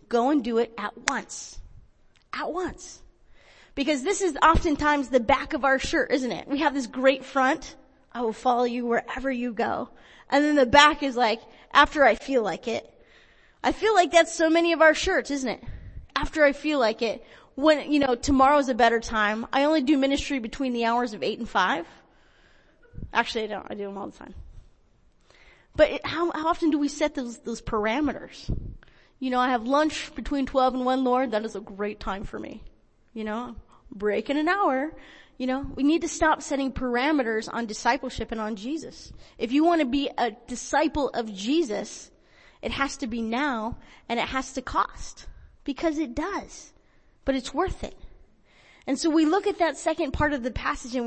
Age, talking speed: 30-49, 205 wpm